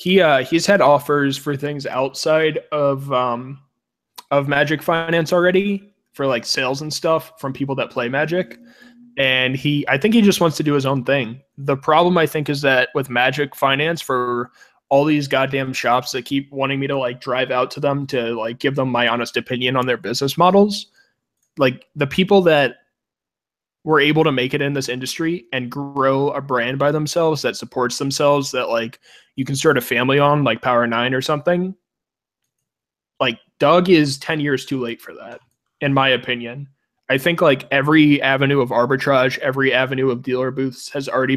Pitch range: 125-150 Hz